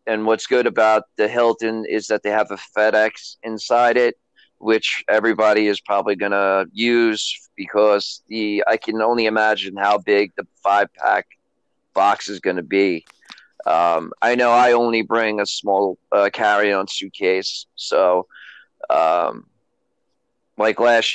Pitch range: 100-115 Hz